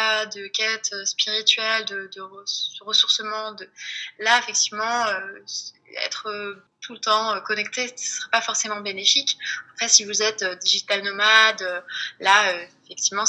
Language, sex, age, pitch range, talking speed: French, female, 20-39, 195-230 Hz, 160 wpm